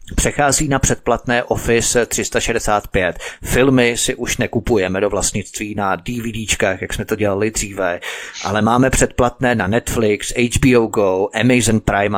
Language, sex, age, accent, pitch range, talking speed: Czech, male, 30-49, native, 105-125 Hz, 135 wpm